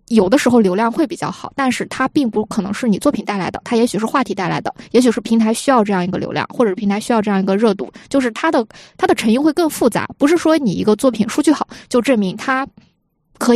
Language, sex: Chinese, female